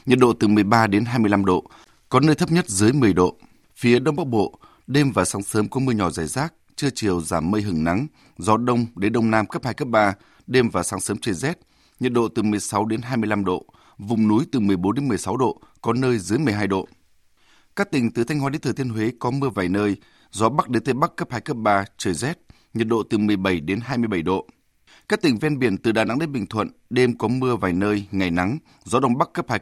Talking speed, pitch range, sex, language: 245 wpm, 100-125 Hz, male, Vietnamese